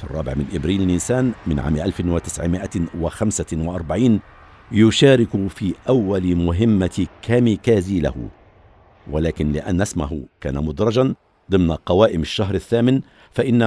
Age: 60-79